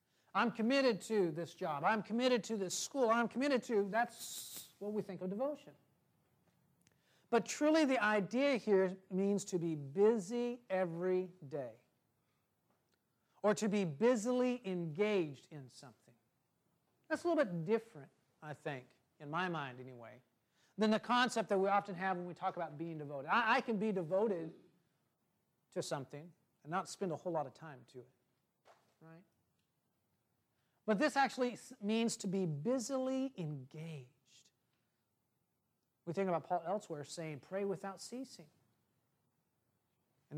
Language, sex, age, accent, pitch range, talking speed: English, male, 50-69, American, 150-220 Hz, 145 wpm